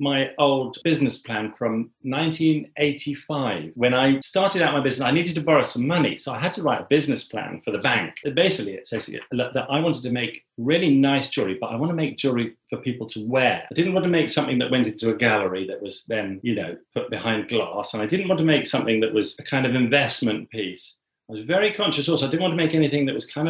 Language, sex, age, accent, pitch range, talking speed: English, male, 40-59, British, 120-155 Hz, 250 wpm